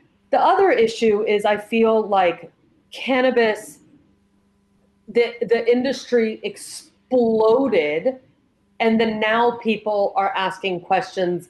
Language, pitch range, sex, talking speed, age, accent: English, 175-230 Hz, female, 100 wpm, 30-49, American